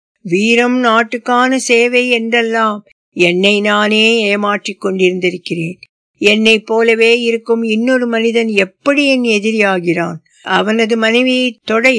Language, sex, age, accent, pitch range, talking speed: Tamil, female, 60-79, native, 190-240 Hz, 95 wpm